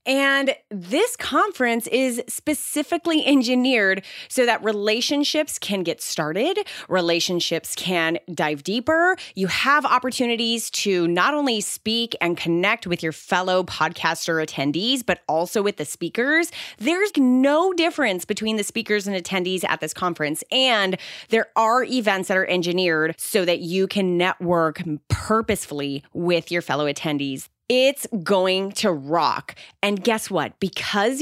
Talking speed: 135 wpm